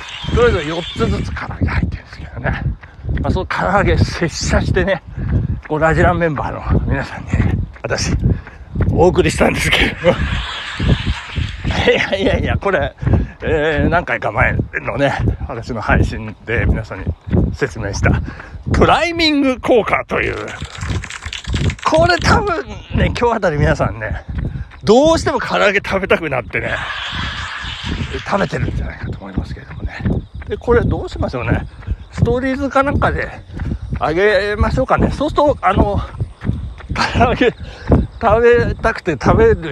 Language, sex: Japanese, male